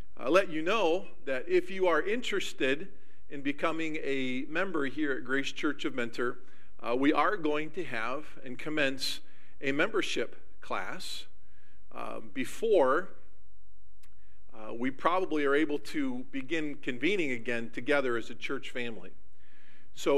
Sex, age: male, 50-69